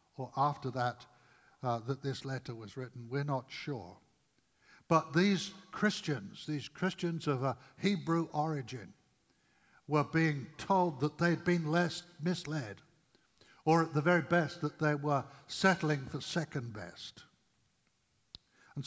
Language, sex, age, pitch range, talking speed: English, male, 60-79, 130-170 Hz, 135 wpm